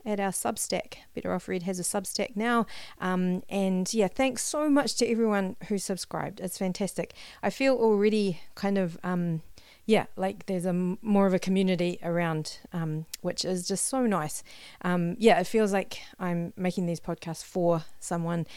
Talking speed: 180 wpm